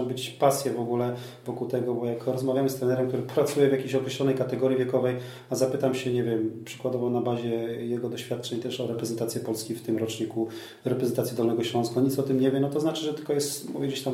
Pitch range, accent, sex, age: 120-130 Hz, native, male, 30-49